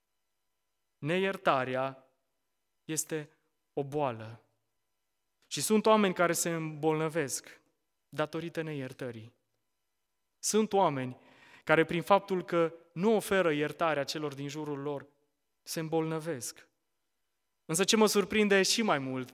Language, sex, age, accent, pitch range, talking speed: Romanian, male, 20-39, native, 130-165 Hz, 105 wpm